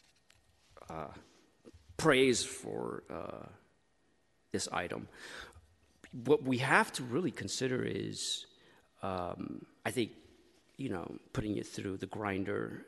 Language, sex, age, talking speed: English, male, 40-59, 105 wpm